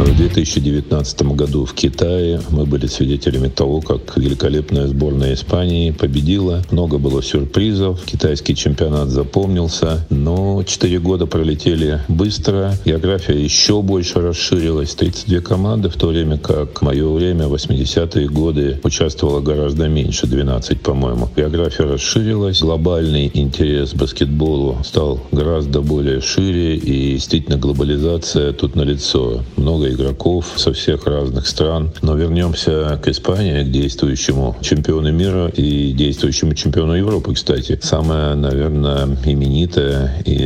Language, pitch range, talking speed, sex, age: Russian, 70-85 Hz, 125 wpm, male, 50-69